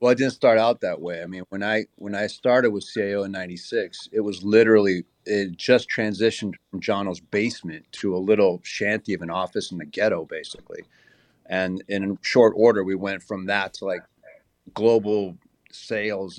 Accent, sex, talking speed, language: American, male, 185 wpm, English